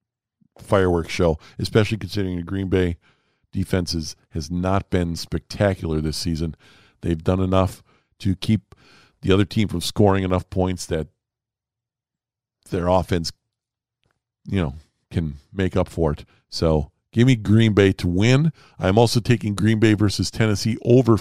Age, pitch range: 50-69, 90-110 Hz